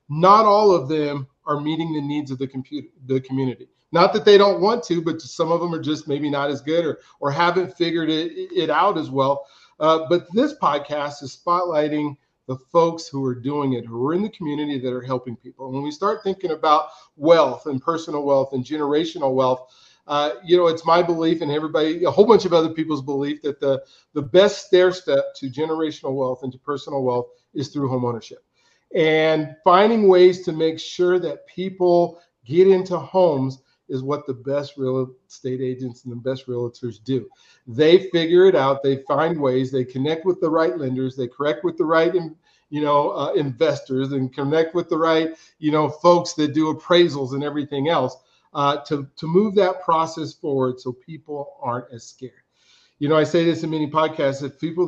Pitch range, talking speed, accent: 135-170 Hz, 200 wpm, American